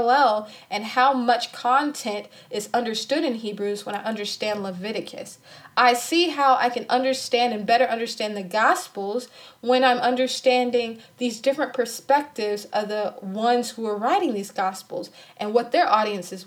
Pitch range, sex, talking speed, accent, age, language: 205-245 Hz, female, 150 wpm, American, 20-39, English